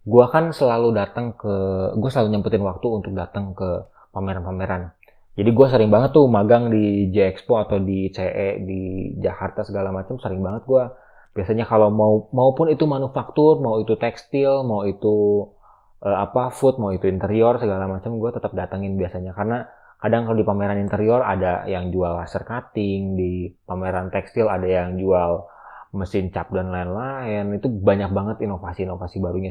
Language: Indonesian